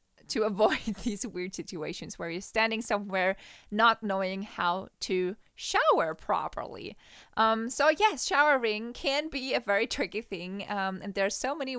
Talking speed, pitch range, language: 160 wpm, 190-275 Hz, English